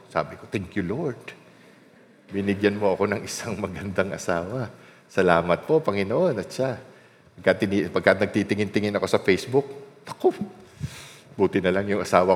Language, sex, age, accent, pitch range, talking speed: Filipino, male, 50-69, native, 100-145 Hz, 145 wpm